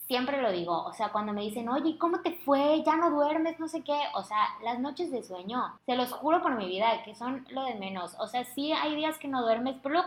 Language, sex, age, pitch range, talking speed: Spanish, female, 20-39, 195-260 Hz, 270 wpm